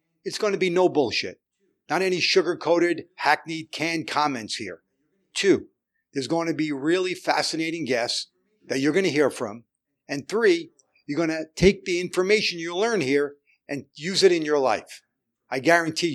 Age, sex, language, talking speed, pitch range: 50-69, male, English, 170 wpm, 135-170 Hz